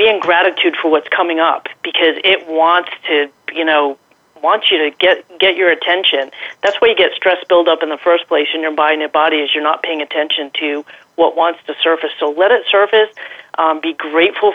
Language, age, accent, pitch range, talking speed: English, 40-59, American, 155-180 Hz, 220 wpm